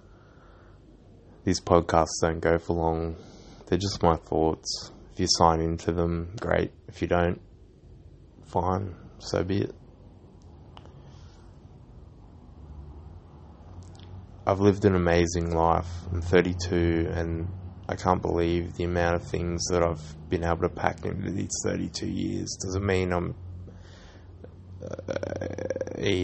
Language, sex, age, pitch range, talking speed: English, male, 20-39, 85-95 Hz, 120 wpm